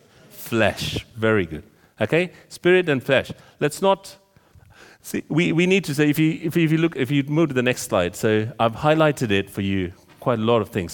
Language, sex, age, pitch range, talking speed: English, male, 40-59, 120-165 Hz, 220 wpm